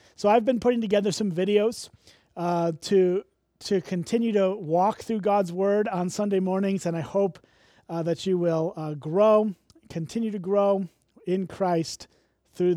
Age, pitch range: 30-49, 175-220 Hz